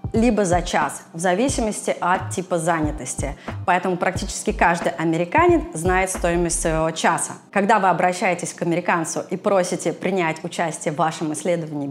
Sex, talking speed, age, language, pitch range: female, 140 wpm, 20-39, Russian, 175-245 Hz